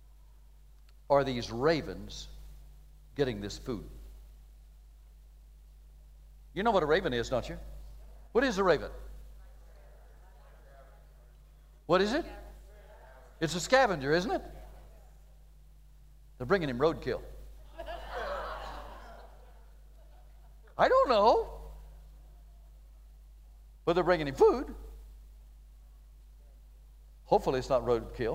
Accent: American